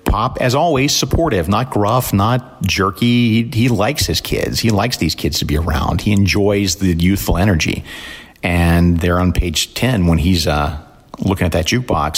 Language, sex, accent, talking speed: English, male, American, 180 wpm